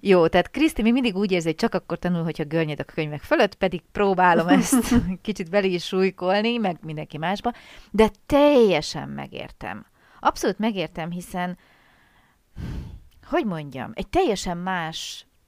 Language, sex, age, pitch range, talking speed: Hungarian, female, 30-49, 155-210 Hz, 140 wpm